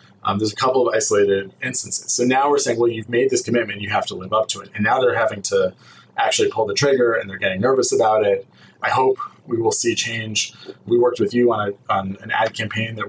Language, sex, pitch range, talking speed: English, male, 100-140 Hz, 250 wpm